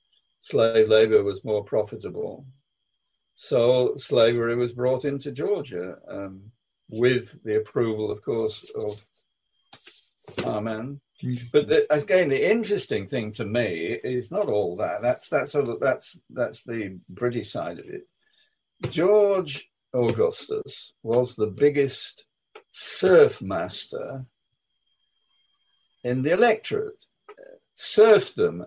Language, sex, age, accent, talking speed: English, male, 60-79, British, 110 wpm